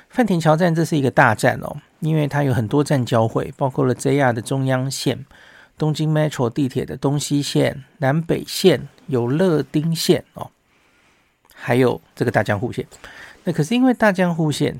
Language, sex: Chinese, male